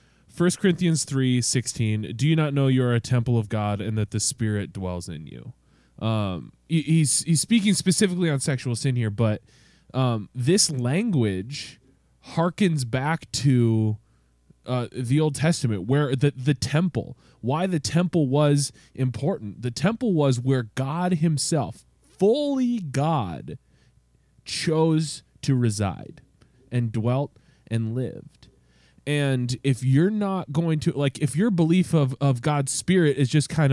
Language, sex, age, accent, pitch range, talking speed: English, male, 20-39, American, 120-165 Hz, 150 wpm